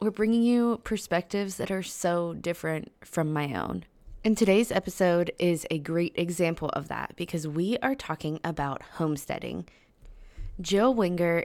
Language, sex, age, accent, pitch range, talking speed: English, female, 20-39, American, 155-190 Hz, 145 wpm